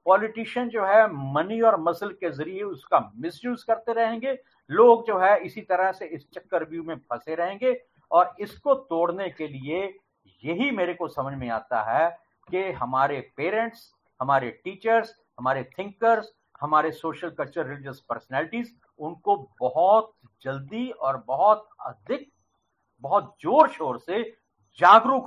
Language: Hindi